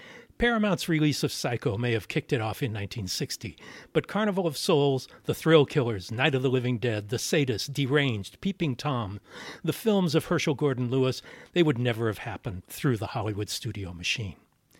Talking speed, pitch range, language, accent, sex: 180 wpm, 115-150 Hz, English, American, male